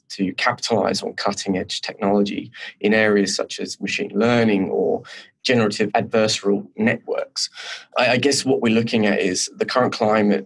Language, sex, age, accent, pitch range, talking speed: English, male, 20-39, British, 100-120 Hz, 145 wpm